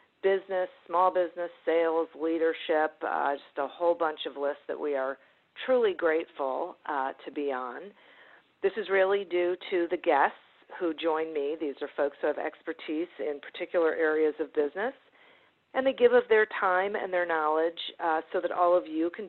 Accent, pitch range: American, 160-210 Hz